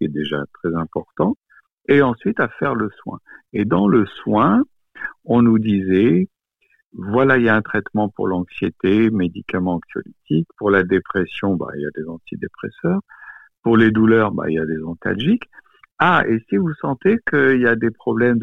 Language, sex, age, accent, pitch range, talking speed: French, male, 60-79, French, 90-135 Hz, 180 wpm